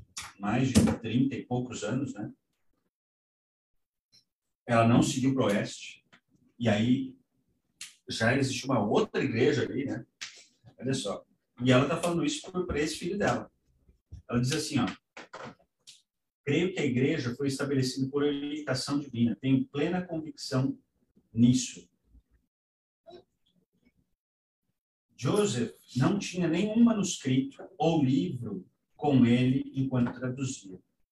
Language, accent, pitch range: Portuguese, Brazilian, 125-155 Hz